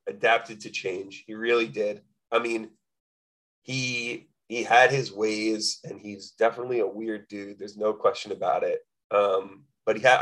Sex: male